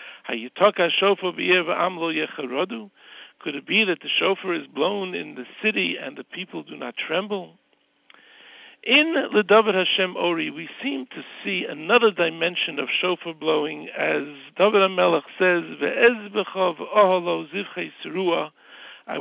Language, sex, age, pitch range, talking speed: English, male, 60-79, 175-215 Hz, 110 wpm